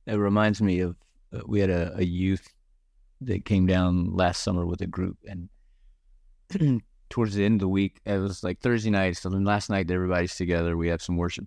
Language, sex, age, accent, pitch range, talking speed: English, male, 30-49, American, 90-110 Hz, 210 wpm